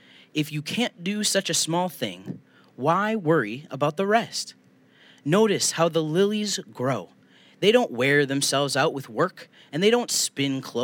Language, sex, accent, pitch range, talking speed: English, male, American, 130-190 Hz, 160 wpm